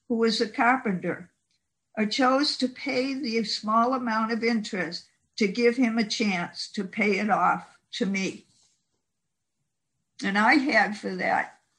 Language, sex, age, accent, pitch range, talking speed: English, female, 60-79, American, 205-240 Hz, 150 wpm